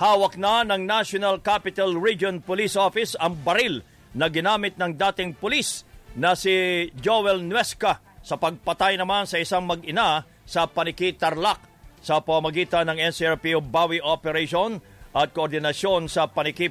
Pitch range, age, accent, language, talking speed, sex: 160-190 Hz, 50-69, Filipino, English, 135 wpm, male